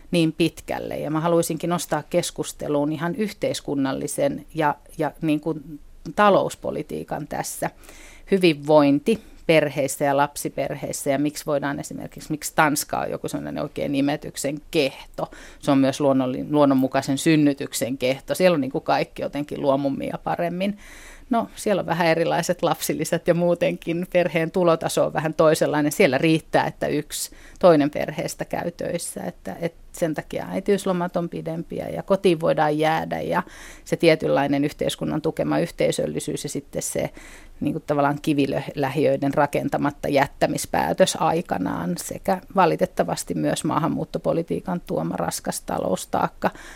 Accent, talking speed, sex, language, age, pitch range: native, 125 wpm, female, Finnish, 30-49, 145-175 Hz